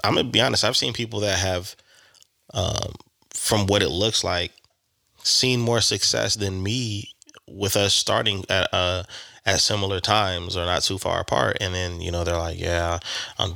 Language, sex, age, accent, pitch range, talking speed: English, male, 20-39, American, 90-105 Hz, 185 wpm